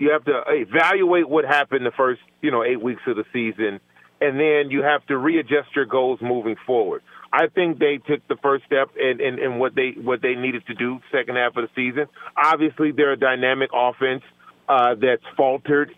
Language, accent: English, American